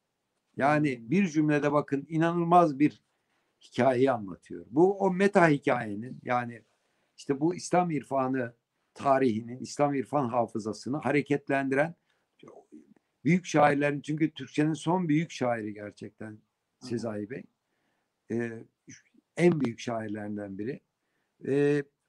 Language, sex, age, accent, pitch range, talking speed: Turkish, male, 60-79, native, 120-160 Hz, 105 wpm